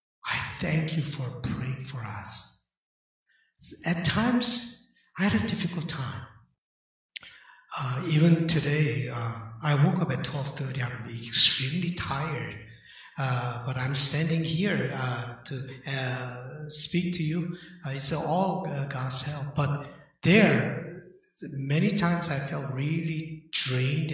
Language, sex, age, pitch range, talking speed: English, male, 60-79, 130-175 Hz, 125 wpm